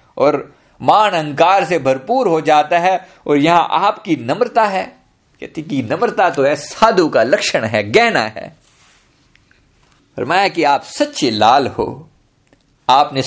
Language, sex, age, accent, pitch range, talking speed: Hindi, male, 50-69, native, 140-225 Hz, 130 wpm